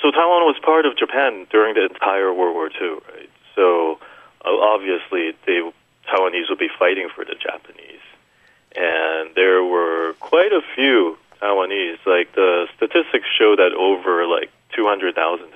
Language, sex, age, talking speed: English, male, 40-59, 145 wpm